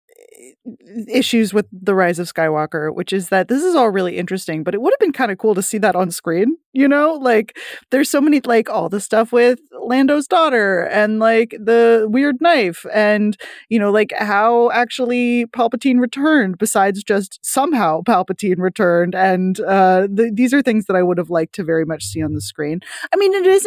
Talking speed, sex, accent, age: 200 wpm, female, American, 20-39